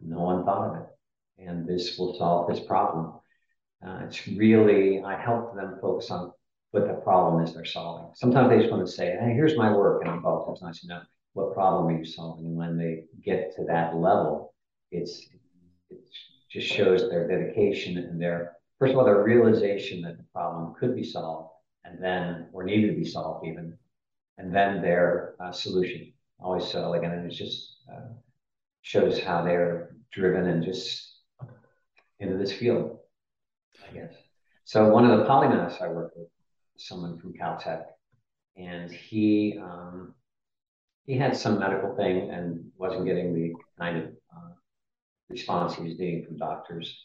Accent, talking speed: American, 175 wpm